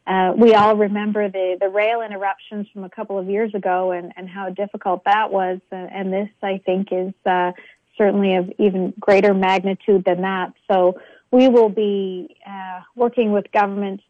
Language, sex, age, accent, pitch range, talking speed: English, female, 30-49, American, 185-205 Hz, 175 wpm